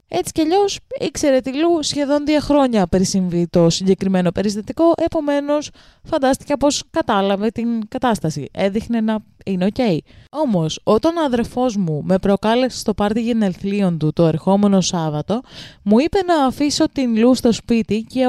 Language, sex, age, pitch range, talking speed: Greek, female, 20-39, 195-275 Hz, 160 wpm